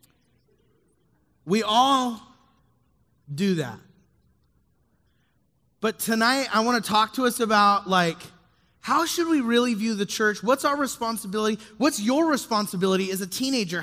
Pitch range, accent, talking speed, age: 185-250 Hz, American, 130 wpm, 30-49